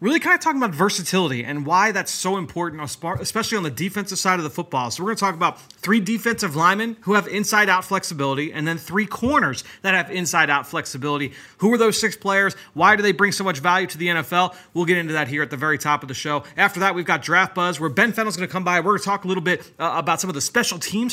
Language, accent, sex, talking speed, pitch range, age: English, American, male, 265 wpm, 160-200 Hz, 30-49